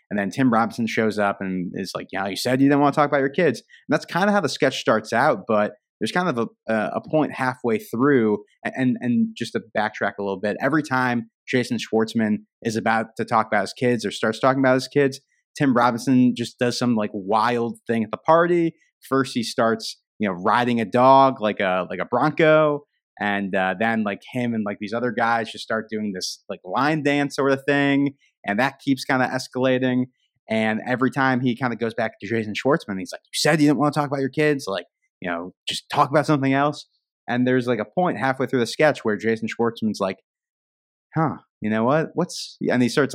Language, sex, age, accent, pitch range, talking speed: English, male, 30-49, American, 110-135 Hz, 230 wpm